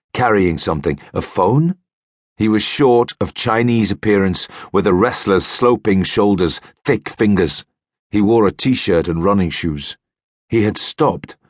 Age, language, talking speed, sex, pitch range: 50-69, English, 140 wpm, male, 85-110 Hz